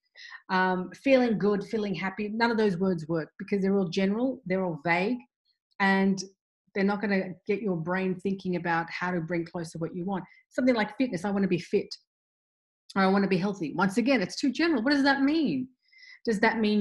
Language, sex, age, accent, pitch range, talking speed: English, female, 30-49, Australian, 185-230 Hz, 215 wpm